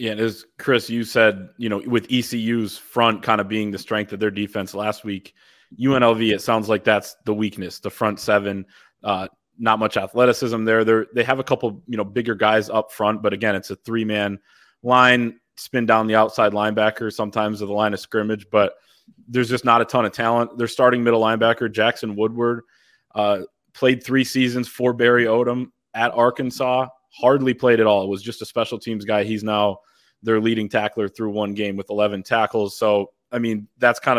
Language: English